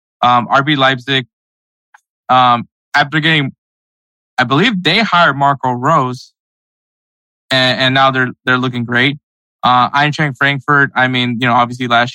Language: English